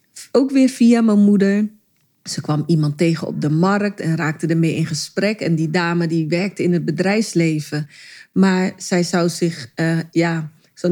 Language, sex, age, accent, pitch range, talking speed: Dutch, female, 30-49, Dutch, 165-200 Hz, 175 wpm